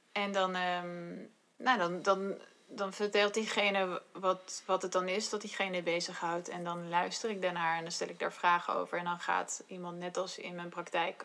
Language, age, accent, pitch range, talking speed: Dutch, 20-39, Dutch, 175-200 Hz, 205 wpm